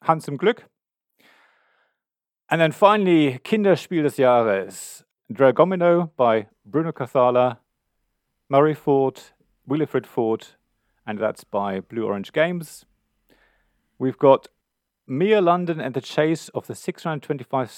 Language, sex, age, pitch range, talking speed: English, male, 40-59, 110-155 Hz, 110 wpm